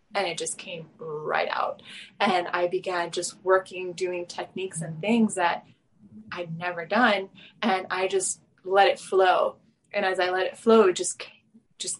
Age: 20-39